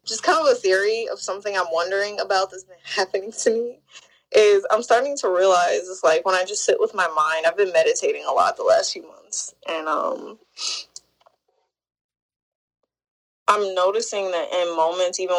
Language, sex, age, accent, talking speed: English, female, 20-39, American, 180 wpm